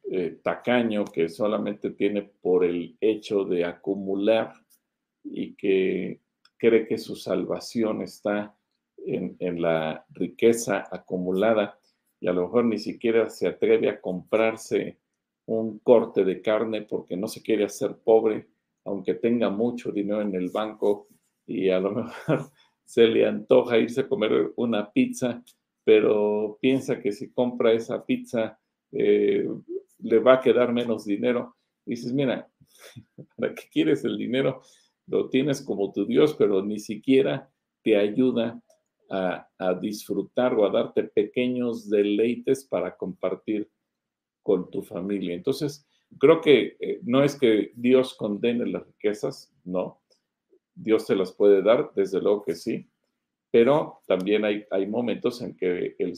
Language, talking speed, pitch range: Spanish, 140 wpm, 100-135 Hz